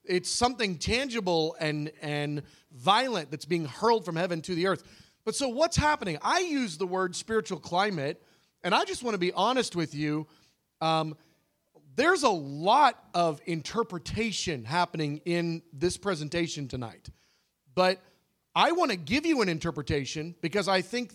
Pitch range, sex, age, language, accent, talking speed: 155-210 Hz, male, 40-59, English, American, 155 wpm